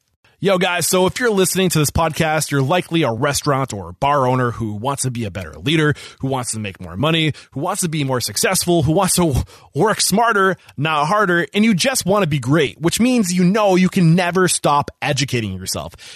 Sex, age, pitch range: male, 30-49, 130-180 Hz